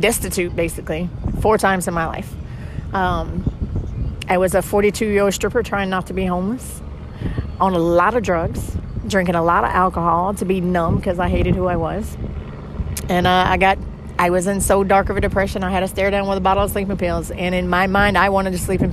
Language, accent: English, American